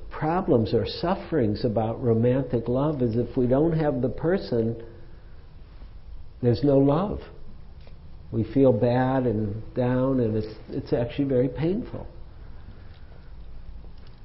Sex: male